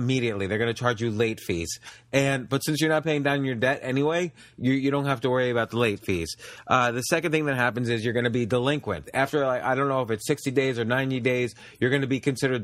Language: English